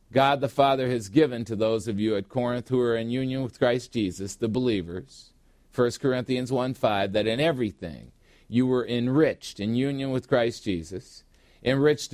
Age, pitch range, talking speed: 50-69, 120-145 Hz, 175 wpm